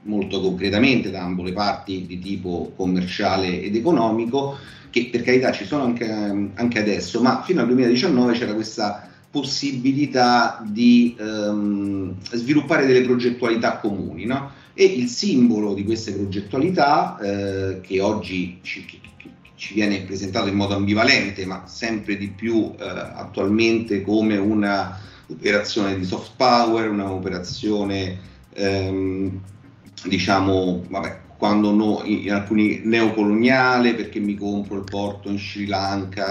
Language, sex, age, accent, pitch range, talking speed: Italian, male, 40-59, native, 95-115 Hz, 125 wpm